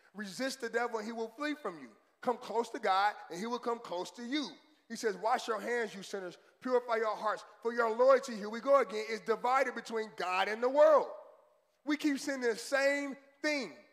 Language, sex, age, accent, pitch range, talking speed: English, male, 30-49, American, 210-255 Hz, 215 wpm